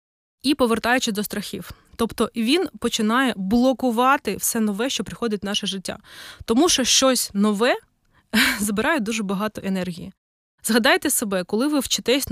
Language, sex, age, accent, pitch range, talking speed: Ukrainian, female, 20-39, native, 205-255 Hz, 135 wpm